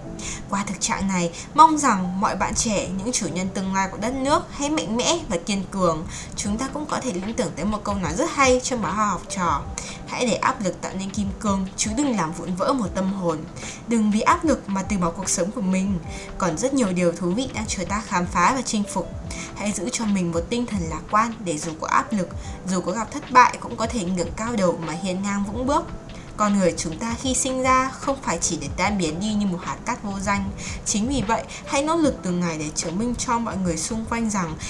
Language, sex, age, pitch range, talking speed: Vietnamese, female, 20-39, 180-240 Hz, 260 wpm